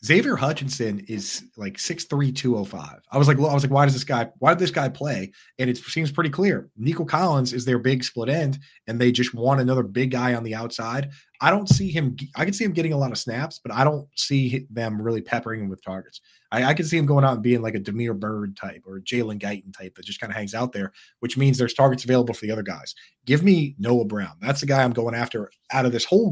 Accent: American